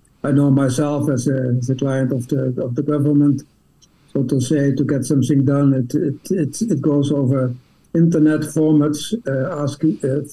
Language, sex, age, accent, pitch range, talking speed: Finnish, male, 60-79, Dutch, 130-150 Hz, 180 wpm